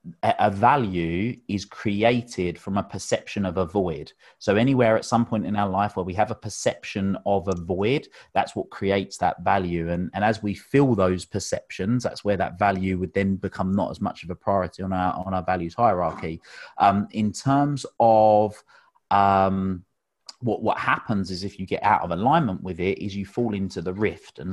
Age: 30-49